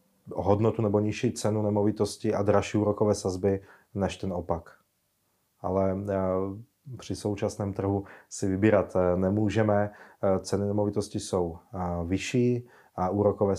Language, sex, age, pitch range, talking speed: Czech, male, 30-49, 95-105 Hz, 110 wpm